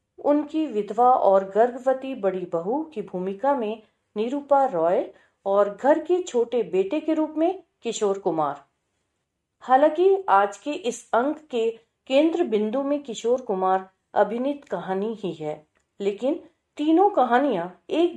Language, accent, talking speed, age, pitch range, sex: Hindi, native, 130 wpm, 40-59, 200-285 Hz, female